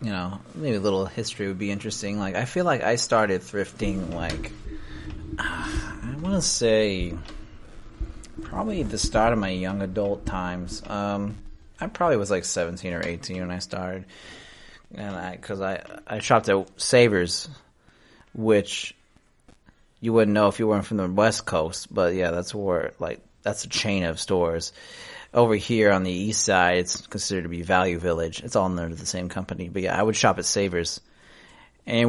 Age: 30-49